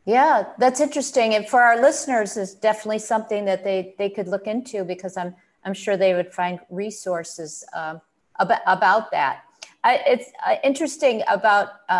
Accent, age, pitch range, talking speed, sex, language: American, 50-69, 190-245 Hz, 165 wpm, female, English